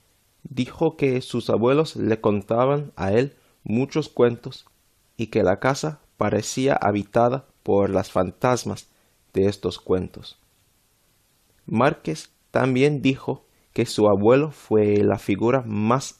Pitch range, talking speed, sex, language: 100-125 Hz, 120 wpm, male, Spanish